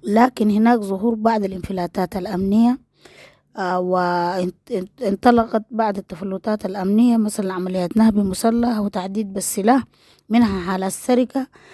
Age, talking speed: 20-39, 95 wpm